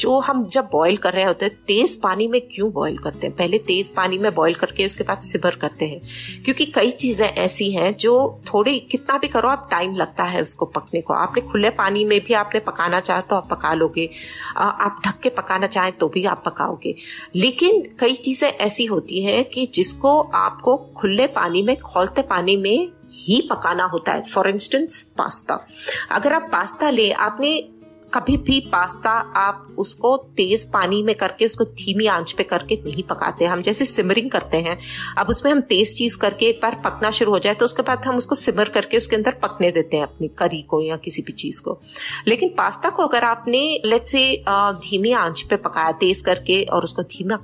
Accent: native